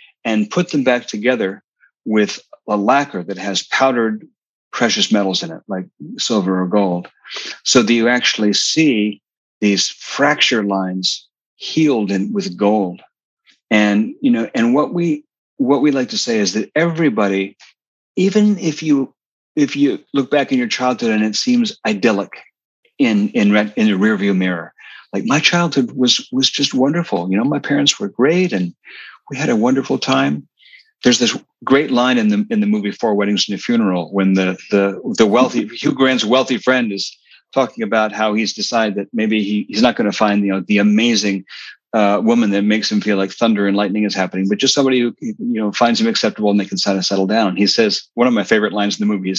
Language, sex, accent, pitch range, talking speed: English, male, American, 100-155 Hz, 200 wpm